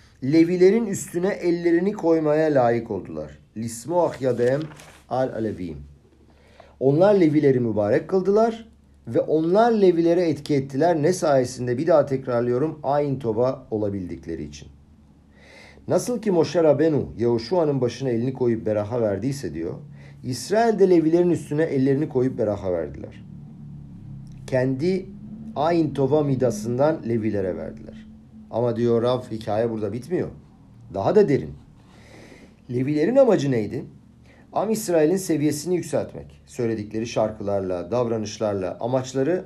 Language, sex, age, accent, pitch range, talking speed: Turkish, male, 50-69, native, 105-160 Hz, 110 wpm